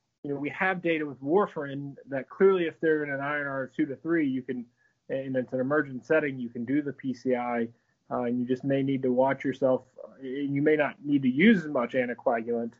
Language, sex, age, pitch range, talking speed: Persian, male, 20-39, 130-160 Hz, 220 wpm